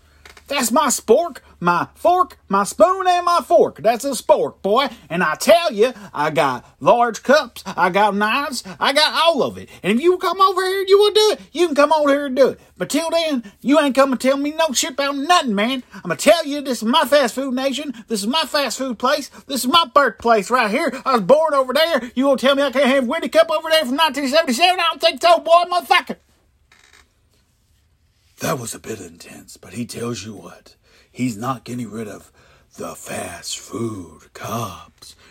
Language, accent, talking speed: English, American, 220 wpm